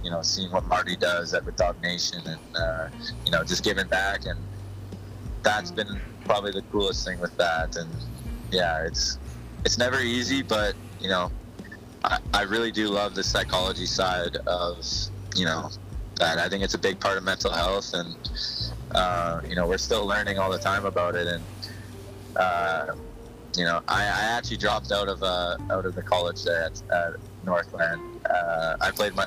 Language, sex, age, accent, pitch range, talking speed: English, male, 20-39, American, 90-105 Hz, 180 wpm